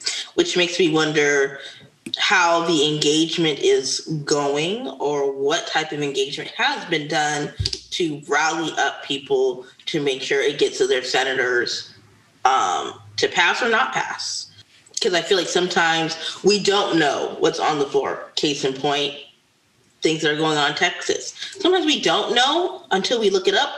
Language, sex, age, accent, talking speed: English, female, 20-39, American, 165 wpm